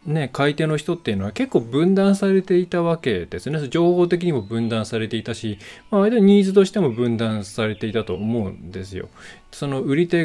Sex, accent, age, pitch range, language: male, native, 20-39, 110-170 Hz, Japanese